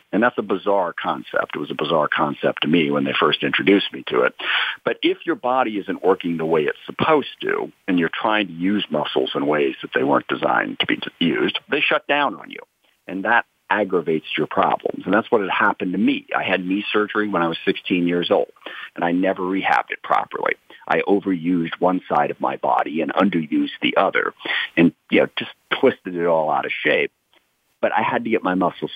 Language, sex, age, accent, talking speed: English, male, 50-69, American, 220 wpm